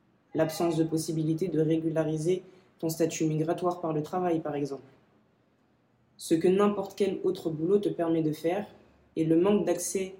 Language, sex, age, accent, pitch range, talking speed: English, female, 20-39, French, 160-190 Hz, 160 wpm